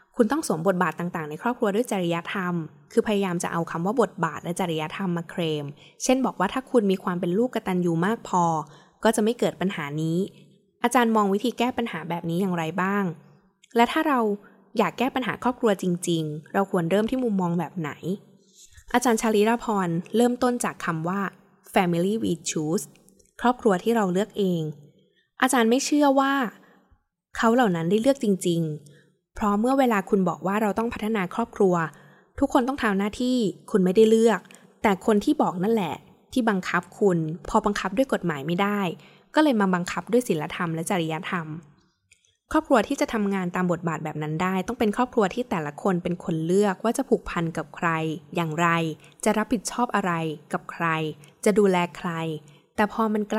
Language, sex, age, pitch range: Thai, female, 10-29, 170-225 Hz